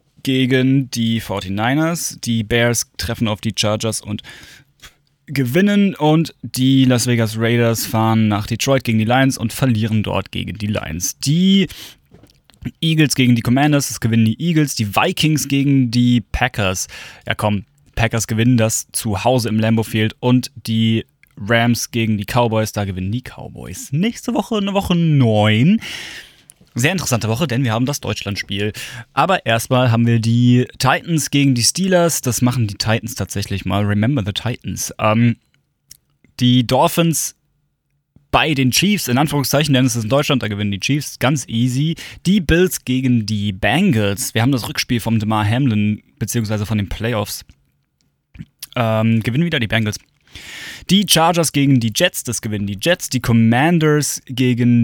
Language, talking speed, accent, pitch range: German, 160 wpm, German, 110-140 Hz